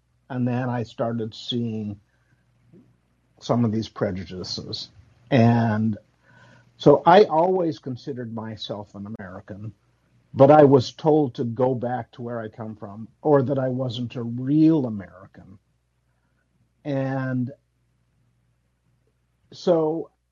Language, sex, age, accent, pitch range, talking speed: English, male, 50-69, American, 115-145 Hz, 110 wpm